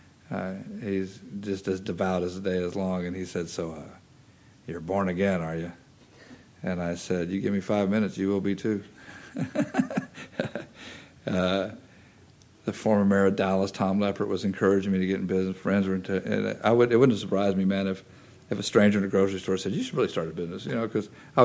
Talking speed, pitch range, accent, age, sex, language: 220 wpm, 90-100 Hz, American, 50-69, male, English